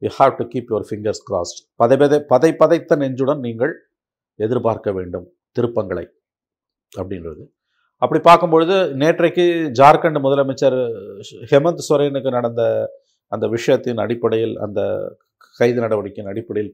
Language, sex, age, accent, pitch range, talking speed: Tamil, male, 50-69, native, 105-145 Hz, 110 wpm